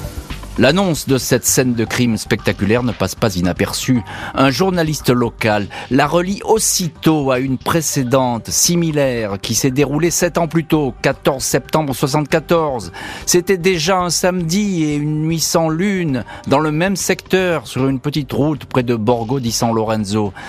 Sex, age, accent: male, 40-59, French